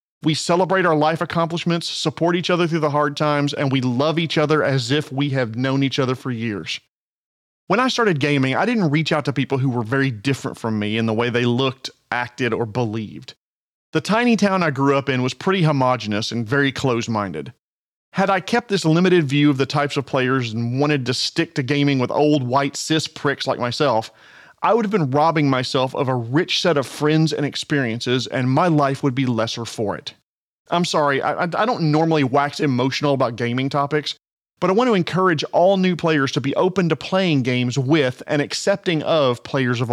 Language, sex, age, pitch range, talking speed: English, male, 40-59, 130-160 Hz, 210 wpm